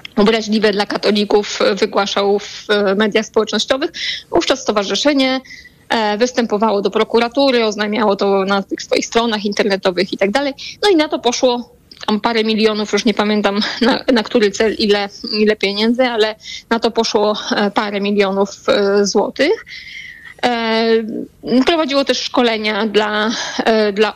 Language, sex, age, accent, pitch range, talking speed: Polish, female, 20-39, native, 210-245 Hz, 125 wpm